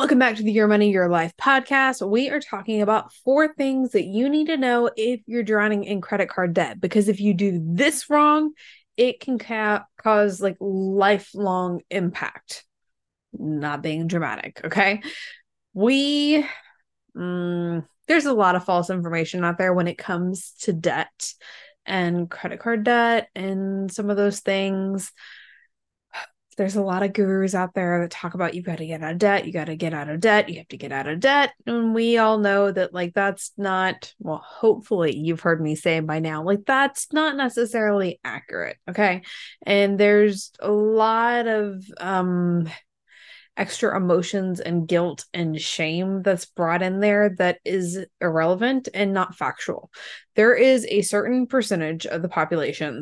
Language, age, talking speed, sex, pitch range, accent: English, 20-39, 170 wpm, female, 175-225 Hz, American